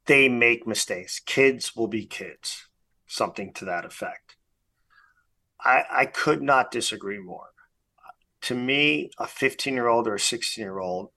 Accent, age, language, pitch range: American, 40-59, English, 95-125 Hz